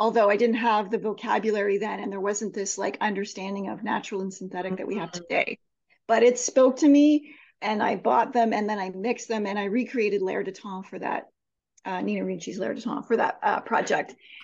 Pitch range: 210-260 Hz